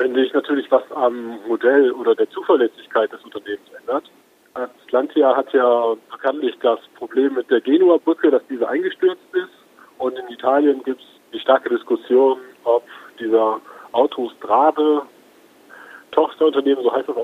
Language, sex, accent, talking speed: German, male, German, 140 wpm